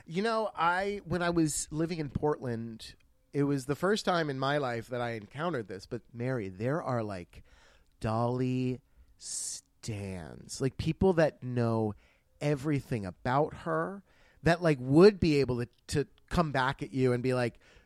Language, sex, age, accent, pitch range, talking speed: English, male, 30-49, American, 120-160 Hz, 165 wpm